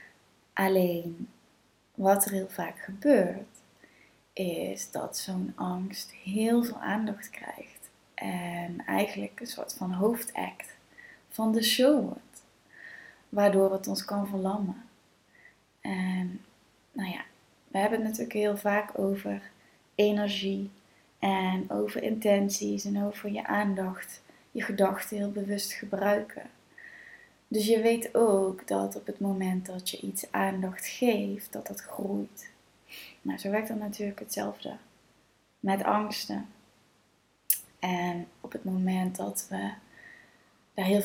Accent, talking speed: Dutch, 125 wpm